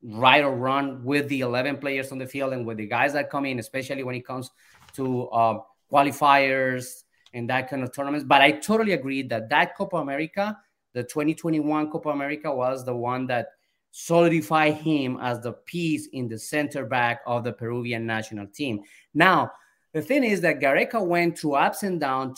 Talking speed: 190 wpm